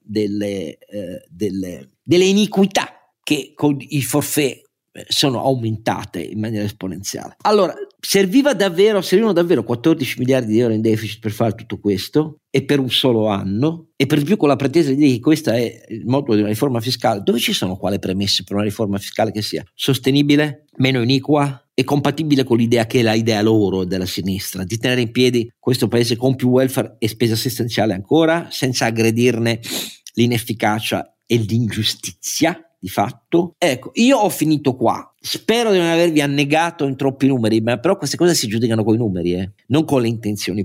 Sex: male